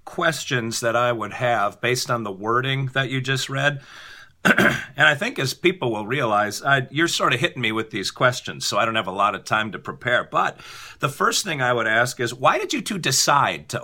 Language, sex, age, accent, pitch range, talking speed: English, male, 50-69, American, 110-135 Hz, 225 wpm